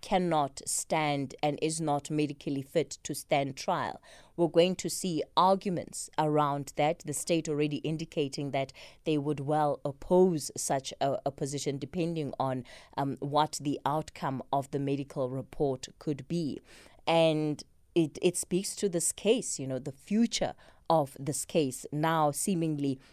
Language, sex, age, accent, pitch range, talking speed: English, female, 20-39, South African, 145-180 Hz, 150 wpm